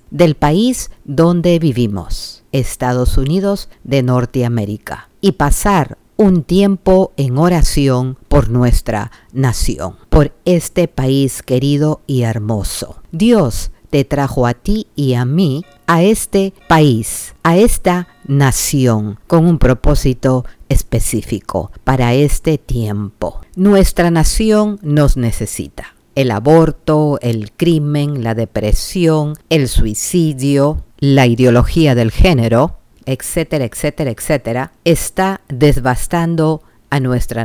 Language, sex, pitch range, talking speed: Spanish, female, 120-165 Hz, 105 wpm